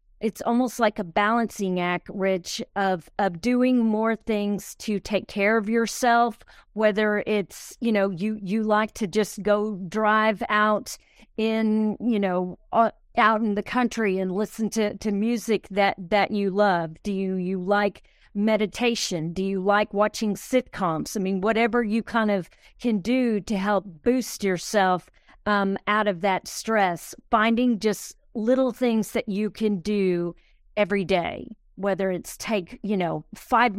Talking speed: 155 wpm